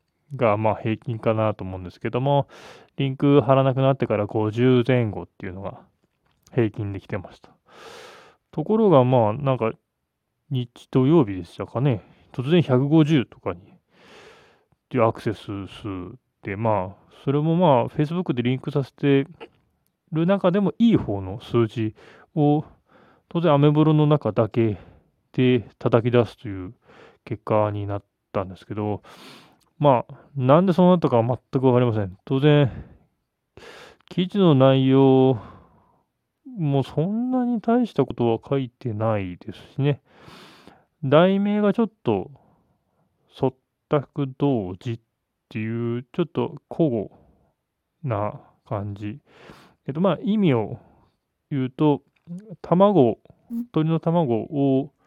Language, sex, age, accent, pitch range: Japanese, male, 20-39, native, 110-155 Hz